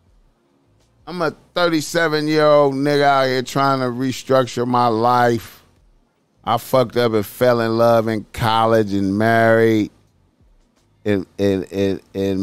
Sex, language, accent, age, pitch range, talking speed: male, English, American, 30-49, 110-135 Hz, 135 wpm